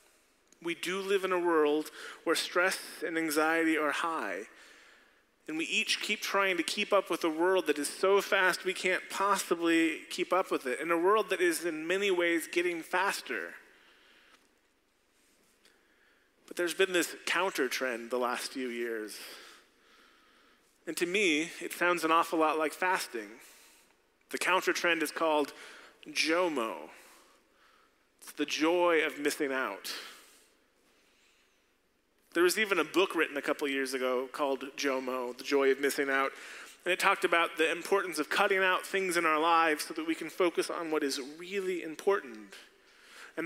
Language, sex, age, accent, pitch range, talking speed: English, male, 30-49, American, 150-195 Hz, 160 wpm